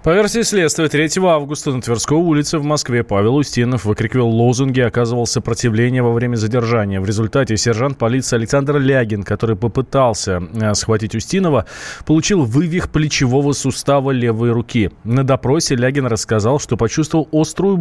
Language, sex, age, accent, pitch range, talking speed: Russian, male, 20-39, native, 115-150 Hz, 140 wpm